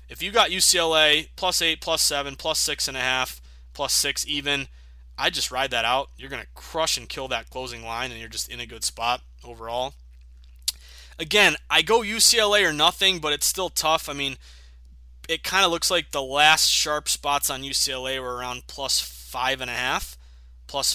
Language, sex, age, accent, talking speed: English, male, 20-39, American, 200 wpm